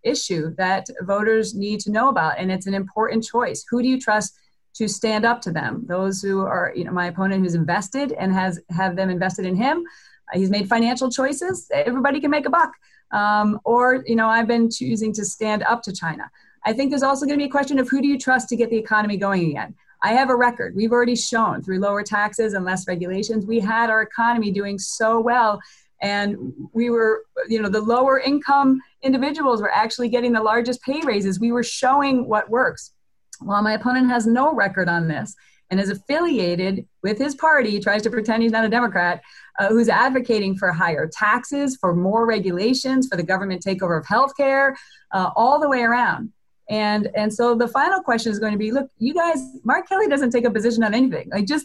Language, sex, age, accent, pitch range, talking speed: English, female, 30-49, American, 200-260 Hz, 215 wpm